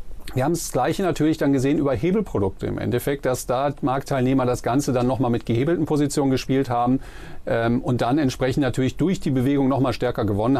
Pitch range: 120-150 Hz